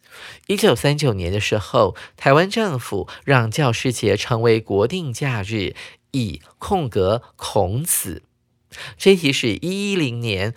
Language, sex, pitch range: Chinese, male, 105-150 Hz